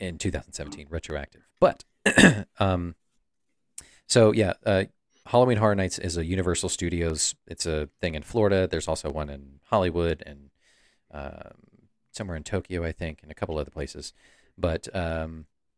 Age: 40-59